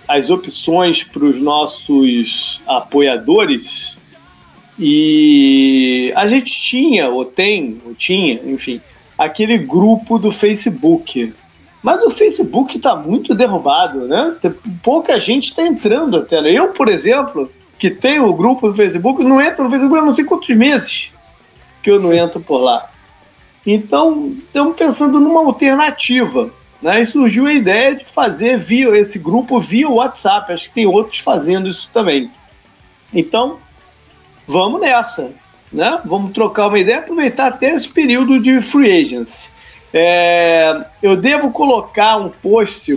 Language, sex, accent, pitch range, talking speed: Portuguese, male, Brazilian, 180-275 Hz, 140 wpm